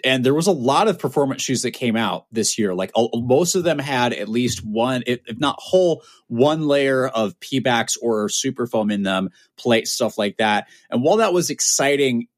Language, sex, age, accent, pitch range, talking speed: English, male, 30-49, American, 120-155 Hz, 210 wpm